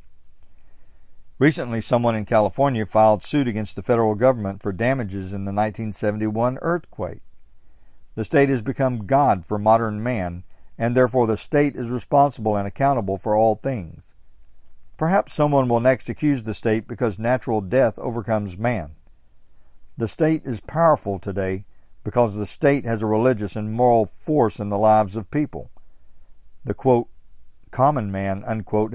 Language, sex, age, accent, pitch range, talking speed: English, male, 50-69, American, 100-130 Hz, 145 wpm